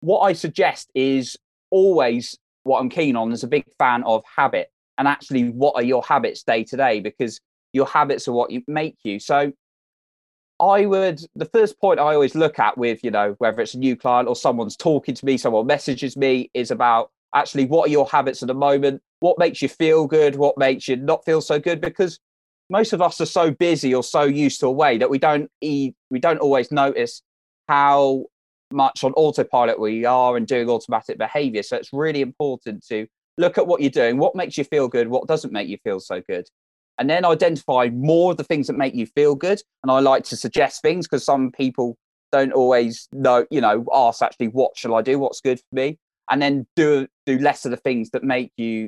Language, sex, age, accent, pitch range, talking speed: English, male, 20-39, British, 125-155 Hz, 220 wpm